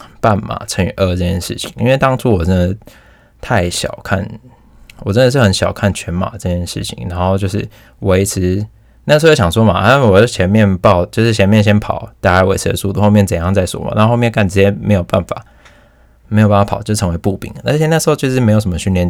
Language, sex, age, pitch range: Chinese, male, 20-39, 95-120 Hz